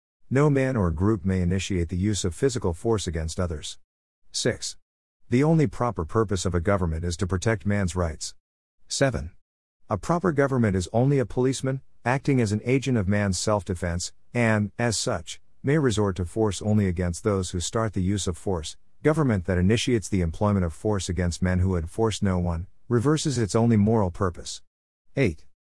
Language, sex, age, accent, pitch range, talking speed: English, male, 50-69, American, 90-115 Hz, 180 wpm